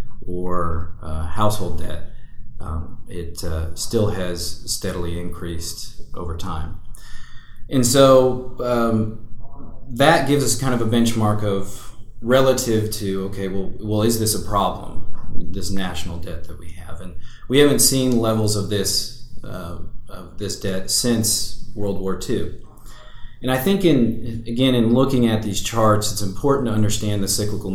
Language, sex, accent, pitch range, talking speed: English, male, American, 90-115 Hz, 150 wpm